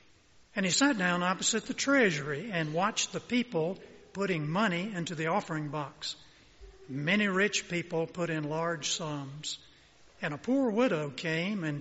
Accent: American